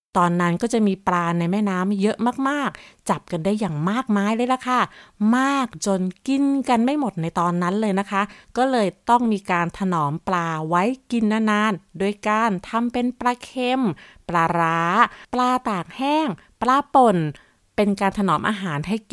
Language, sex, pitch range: Thai, female, 180-235 Hz